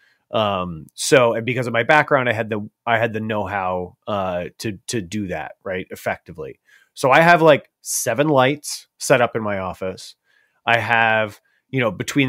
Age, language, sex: 30-49, English, male